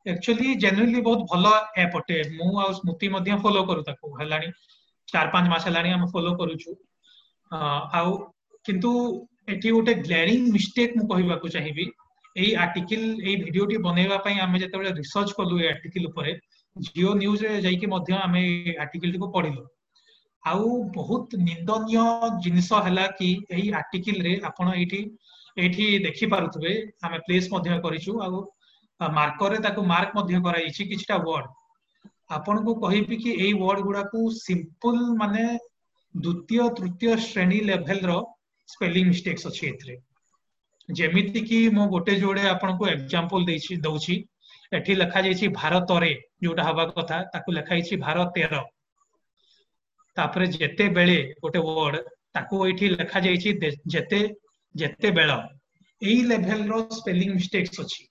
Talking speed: 60 wpm